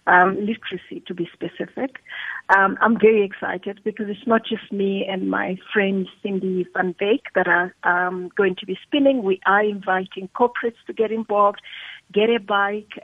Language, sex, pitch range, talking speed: English, female, 190-225 Hz, 170 wpm